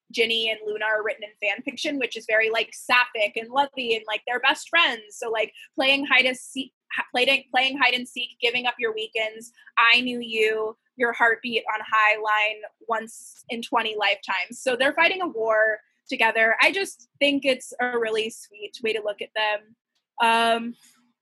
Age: 20-39